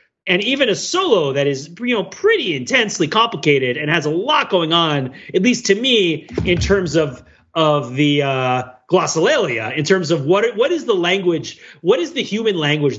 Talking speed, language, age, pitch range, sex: 190 wpm, English, 30-49, 130-185 Hz, male